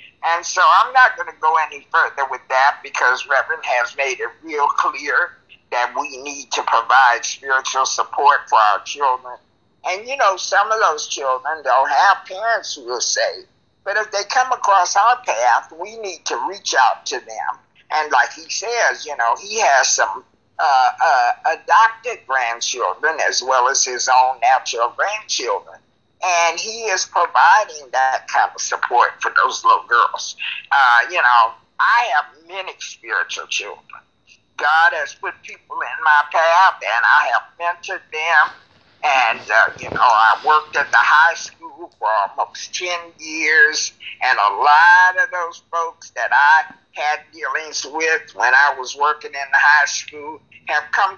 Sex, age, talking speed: male, 50-69, 165 wpm